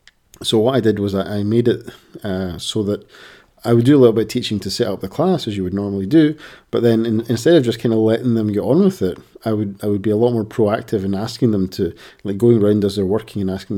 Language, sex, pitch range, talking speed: English, male, 95-115 Hz, 280 wpm